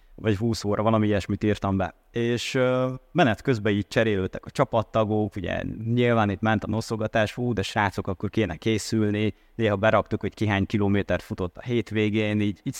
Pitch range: 100-120 Hz